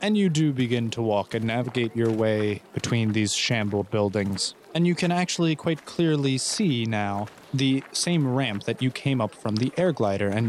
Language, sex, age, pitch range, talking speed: English, male, 20-39, 110-140 Hz, 195 wpm